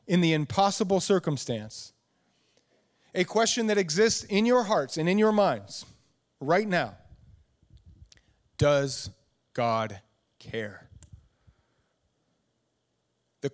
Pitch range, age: 125-180 Hz, 30-49